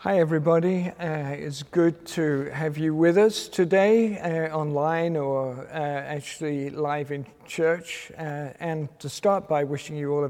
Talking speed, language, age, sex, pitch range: 165 wpm, English, 50-69, male, 145-175 Hz